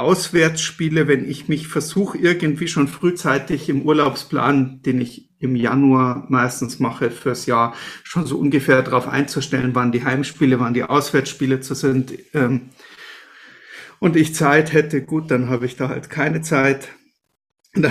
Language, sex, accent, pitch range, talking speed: German, male, German, 135-175 Hz, 150 wpm